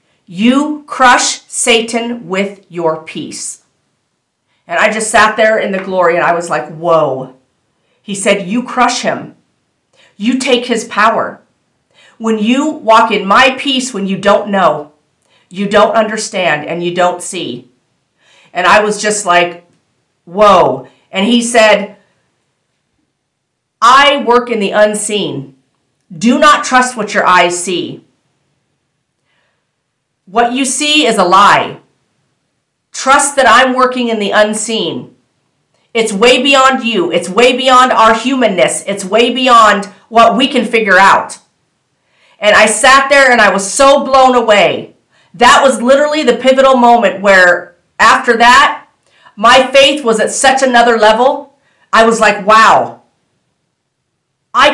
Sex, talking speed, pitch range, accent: female, 140 wpm, 195-250 Hz, American